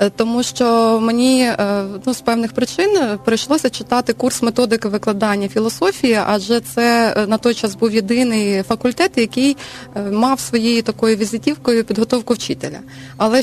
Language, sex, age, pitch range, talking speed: Ukrainian, female, 20-39, 210-245 Hz, 130 wpm